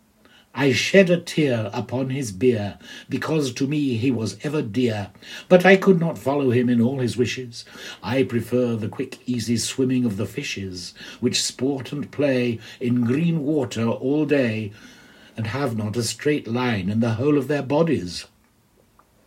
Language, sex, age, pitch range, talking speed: English, male, 60-79, 110-140 Hz, 170 wpm